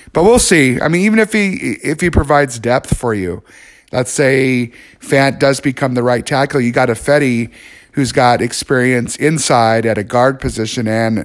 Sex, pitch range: male, 115-135 Hz